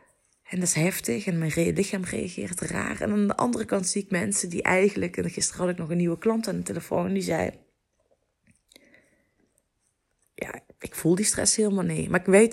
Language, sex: Dutch, female